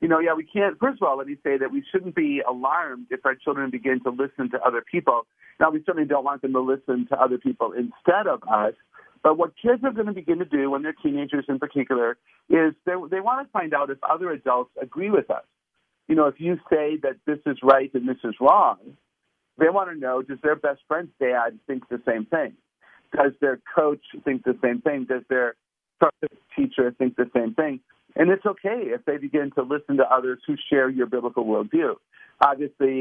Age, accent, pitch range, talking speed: 50-69, American, 130-150 Hz, 220 wpm